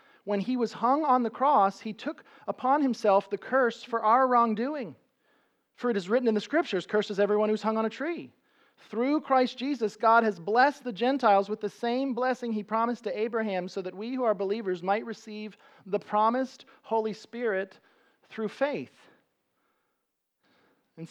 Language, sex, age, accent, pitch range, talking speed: English, male, 40-59, American, 185-245 Hz, 175 wpm